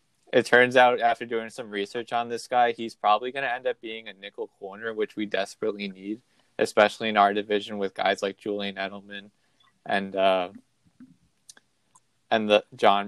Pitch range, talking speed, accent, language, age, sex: 100-115 Hz, 175 wpm, American, English, 20-39, male